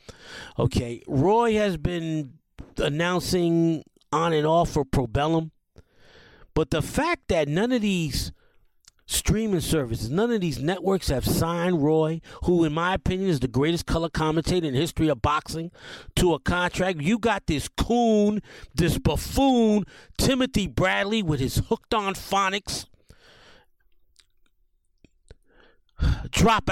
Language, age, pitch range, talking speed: English, 40-59, 165-245 Hz, 130 wpm